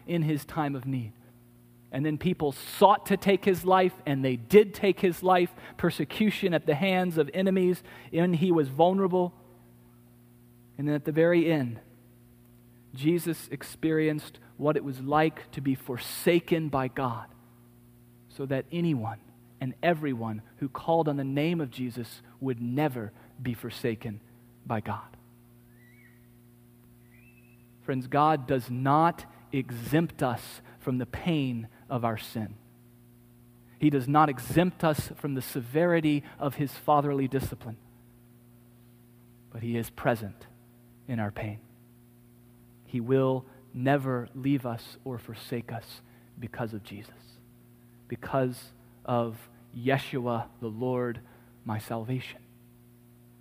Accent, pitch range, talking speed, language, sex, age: American, 120-145 Hz, 125 wpm, English, male, 40-59